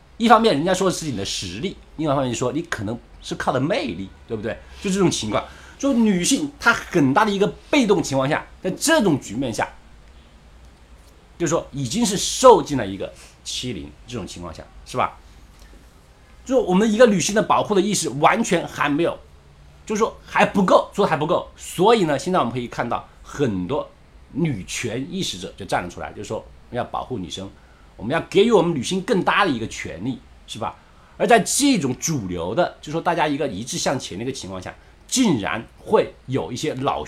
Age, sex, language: 50-69, male, Chinese